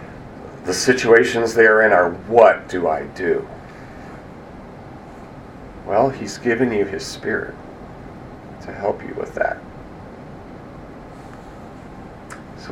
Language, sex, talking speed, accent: English, male, 105 wpm, American